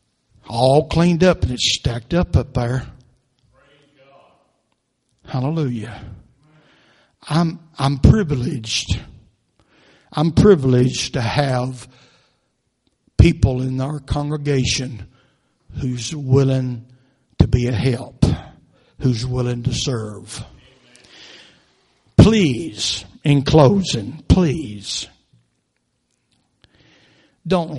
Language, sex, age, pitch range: English, male, 60-79, 115-140 Hz